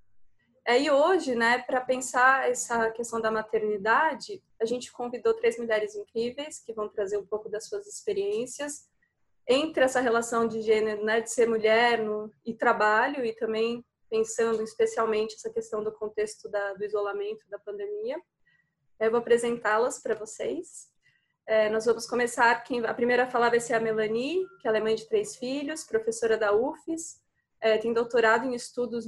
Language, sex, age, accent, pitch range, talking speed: Portuguese, female, 20-39, Brazilian, 220-250 Hz, 170 wpm